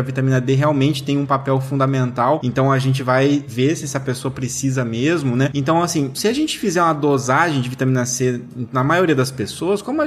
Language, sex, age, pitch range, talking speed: Portuguese, male, 20-39, 135-185 Hz, 215 wpm